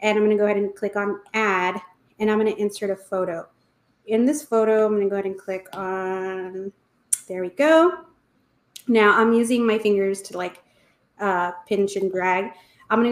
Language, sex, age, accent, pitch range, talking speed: English, female, 30-49, American, 195-245 Hz, 190 wpm